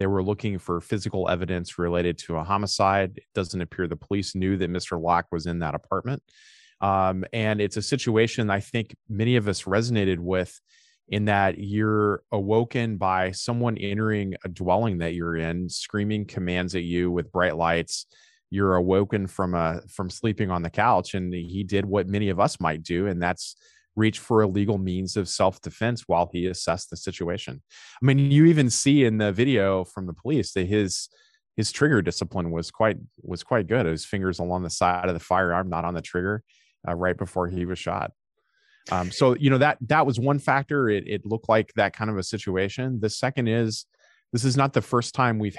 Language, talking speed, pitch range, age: English, 200 wpm, 90-110 Hz, 30-49